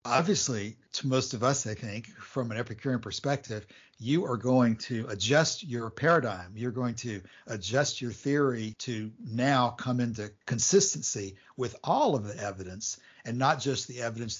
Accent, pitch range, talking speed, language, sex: American, 110-135 Hz, 165 wpm, English, male